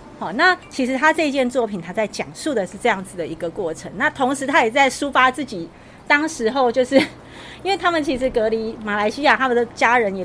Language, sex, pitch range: Chinese, female, 205-285 Hz